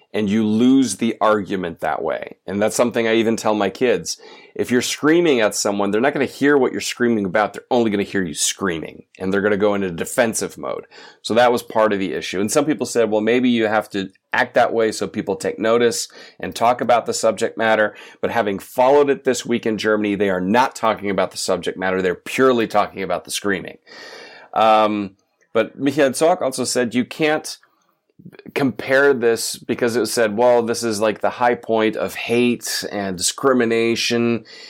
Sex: male